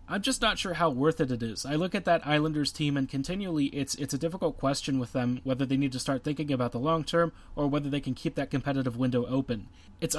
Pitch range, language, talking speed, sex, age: 135-160 Hz, English, 260 wpm, male, 30-49